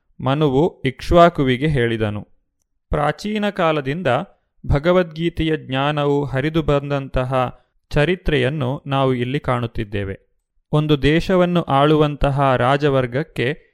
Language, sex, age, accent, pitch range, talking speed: Kannada, male, 30-49, native, 130-160 Hz, 75 wpm